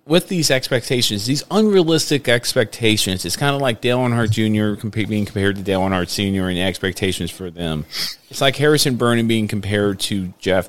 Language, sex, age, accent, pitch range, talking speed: English, male, 40-59, American, 100-130 Hz, 185 wpm